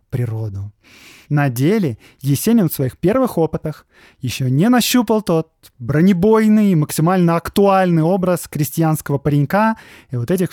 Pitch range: 140-190 Hz